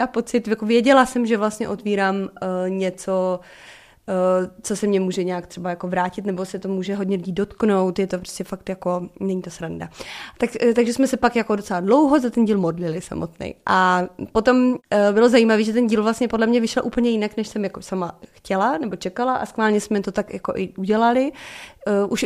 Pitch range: 190-225 Hz